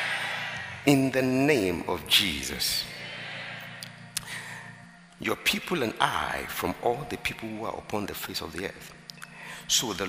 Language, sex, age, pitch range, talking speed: English, male, 60-79, 90-135 Hz, 135 wpm